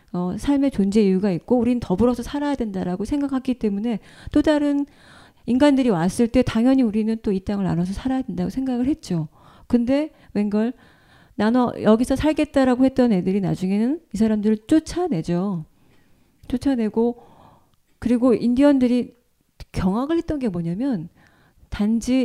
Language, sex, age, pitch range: Korean, female, 40-59, 195-255 Hz